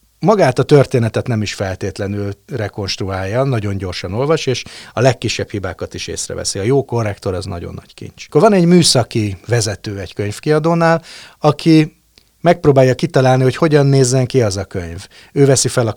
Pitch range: 100-135 Hz